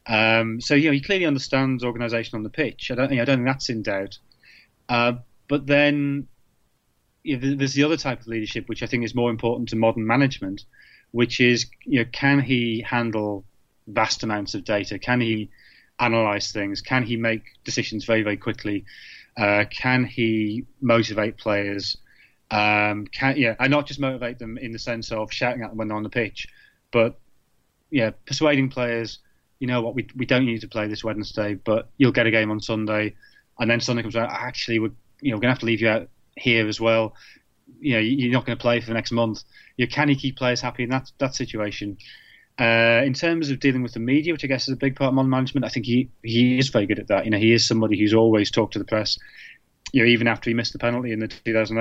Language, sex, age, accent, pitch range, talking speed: English, male, 30-49, British, 110-125 Hz, 235 wpm